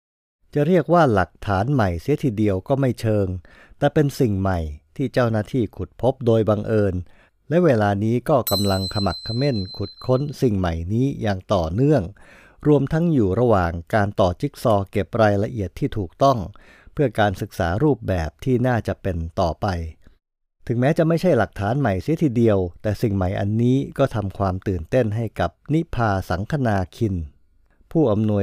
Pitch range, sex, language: 95-130 Hz, male, English